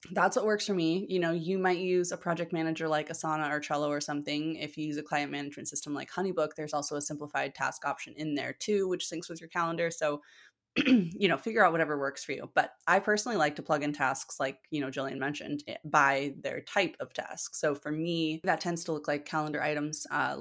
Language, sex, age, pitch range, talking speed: English, female, 20-39, 150-180 Hz, 235 wpm